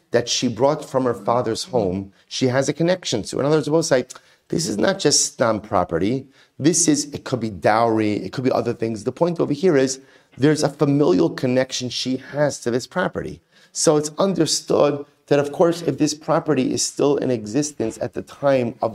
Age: 30-49